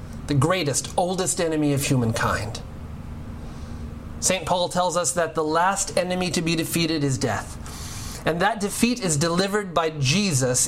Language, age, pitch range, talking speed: English, 30-49, 100-160 Hz, 145 wpm